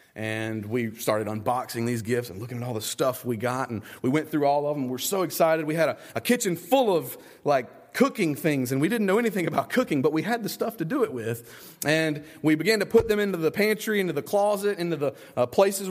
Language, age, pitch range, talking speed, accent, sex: English, 30-49, 130-200 Hz, 250 wpm, American, male